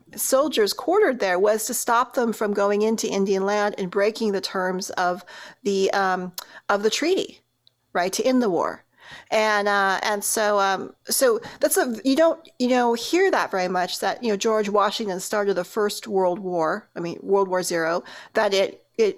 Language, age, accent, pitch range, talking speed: English, 40-59, American, 190-225 Hz, 190 wpm